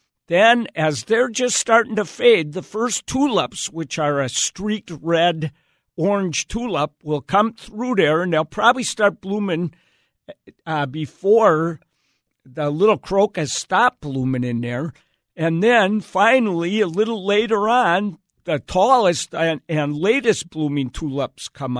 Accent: American